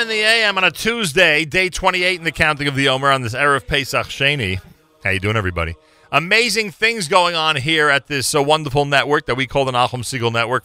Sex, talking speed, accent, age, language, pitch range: male, 225 wpm, American, 40-59, English, 100-140 Hz